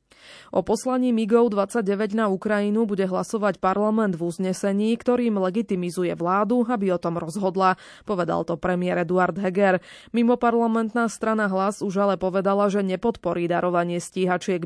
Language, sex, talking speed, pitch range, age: Slovak, female, 140 wpm, 180-220 Hz, 20-39